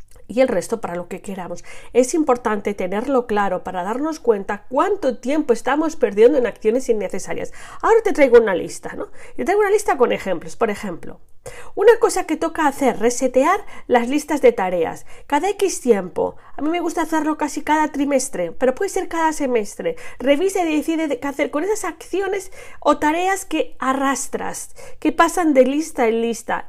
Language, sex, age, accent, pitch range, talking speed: Spanish, female, 40-59, Spanish, 230-345 Hz, 180 wpm